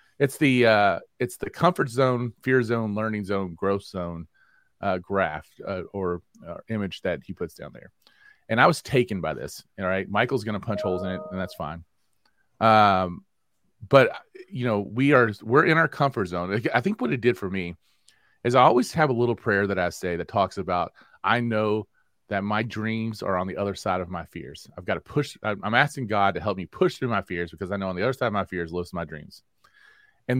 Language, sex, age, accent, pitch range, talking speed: English, male, 30-49, American, 95-125 Hz, 225 wpm